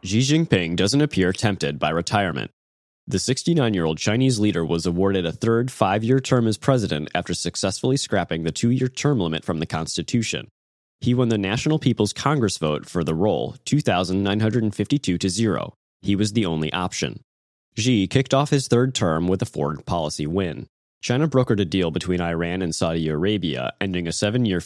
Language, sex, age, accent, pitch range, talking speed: English, male, 20-39, American, 85-115 Hz, 170 wpm